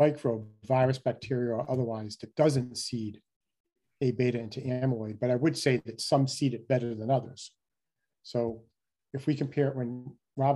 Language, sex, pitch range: English, male, 115-140 Hz